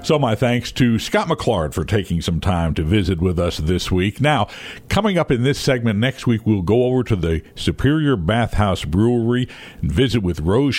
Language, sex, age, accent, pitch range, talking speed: English, male, 60-79, American, 90-125 Hz, 200 wpm